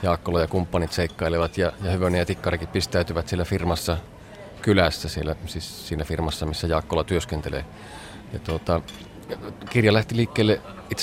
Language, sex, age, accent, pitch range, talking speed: Finnish, male, 30-49, native, 90-105 Hz, 140 wpm